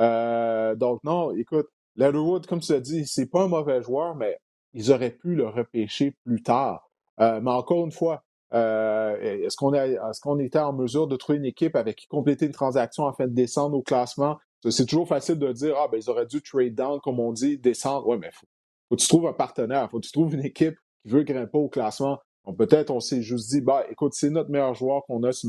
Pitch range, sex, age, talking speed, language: 115-150 Hz, male, 30-49, 240 wpm, French